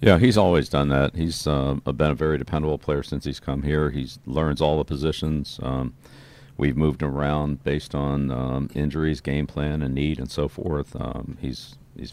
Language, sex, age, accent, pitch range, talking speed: English, male, 50-69, American, 70-80 Hz, 200 wpm